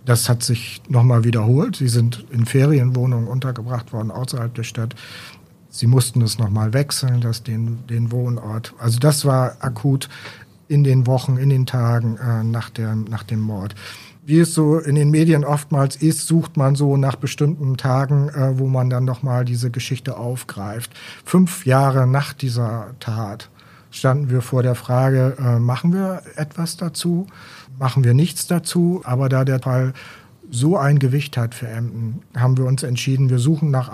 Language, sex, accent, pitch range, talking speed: German, male, German, 120-140 Hz, 175 wpm